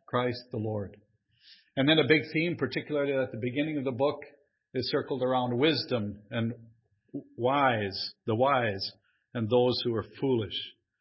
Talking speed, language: 155 wpm, English